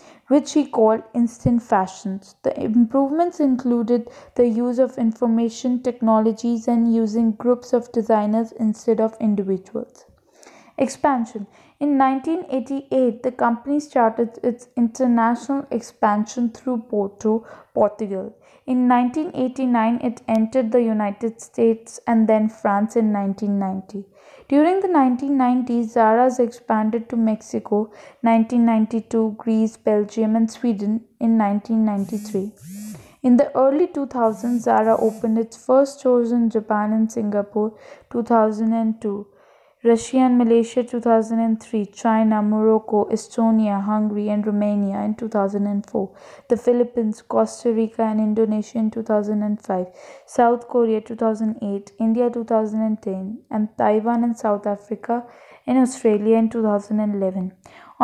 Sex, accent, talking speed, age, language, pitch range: female, Indian, 110 wpm, 20-39, English, 215-245 Hz